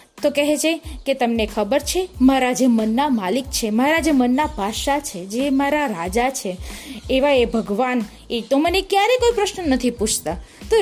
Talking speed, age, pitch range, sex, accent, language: 135 wpm, 20-39, 250-330 Hz, female, native, Gujarati